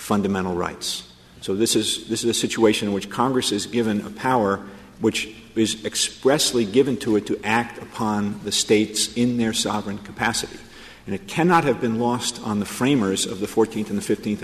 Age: 50-69